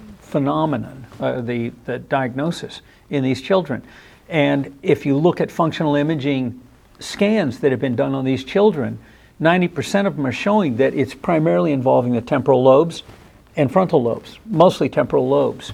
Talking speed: 155 wpm